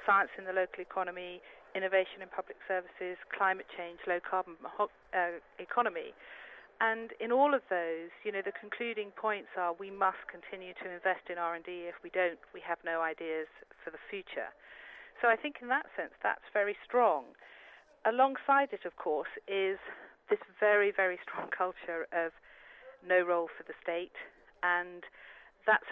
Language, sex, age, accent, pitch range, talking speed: English, female, 40-59, British, 175-220 Hz, 160 wpm